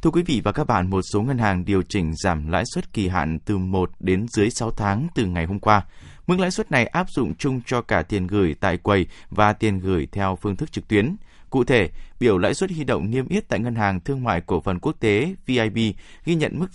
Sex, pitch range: male, 95-125 Hz